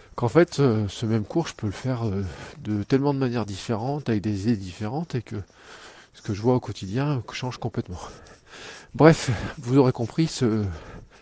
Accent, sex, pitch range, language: French, male, 100-125 Hz, French